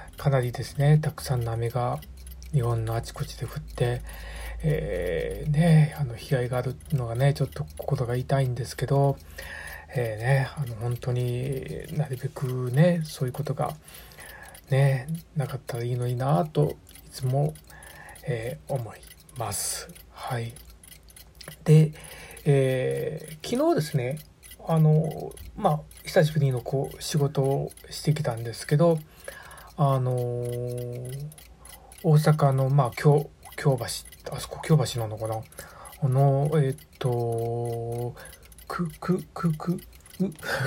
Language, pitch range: Japanese, 120-155 Hz